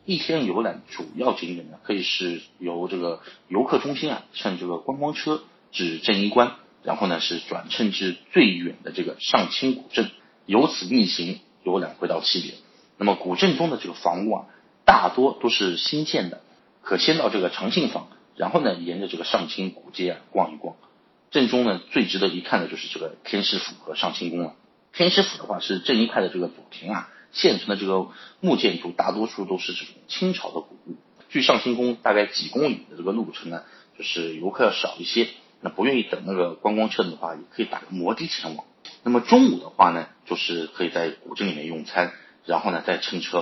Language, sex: Chinese, male